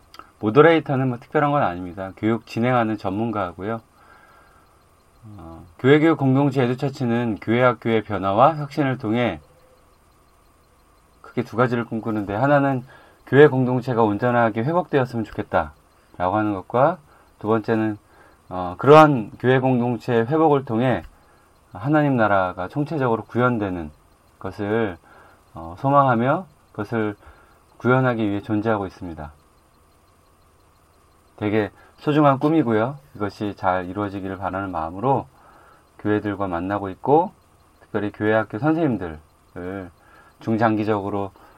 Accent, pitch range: native, 90-125 Hz